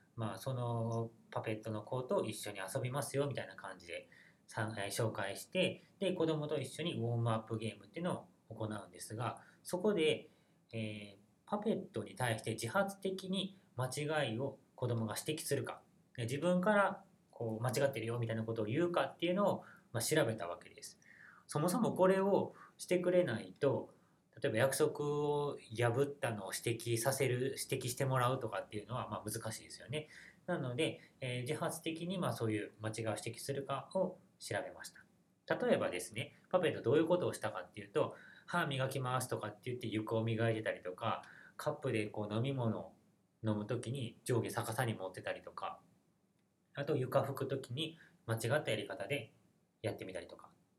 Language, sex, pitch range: Japanese, male, 110-155 Hz